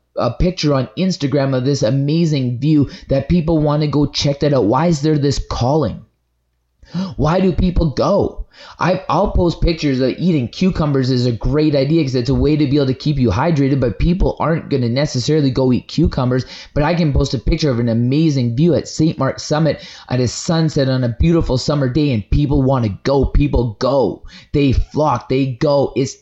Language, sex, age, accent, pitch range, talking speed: English, male, 20-39, American, 125-150 Hz, 205 wpm